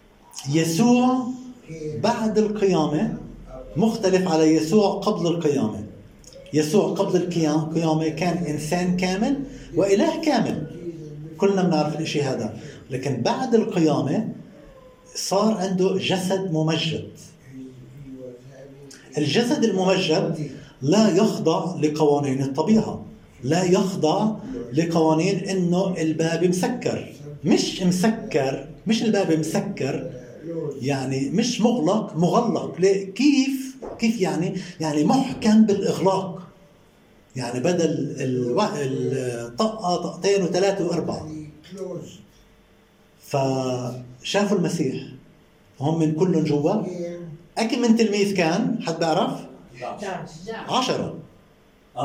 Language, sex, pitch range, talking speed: Arabic, male, 150-200 Hz, 95 wpm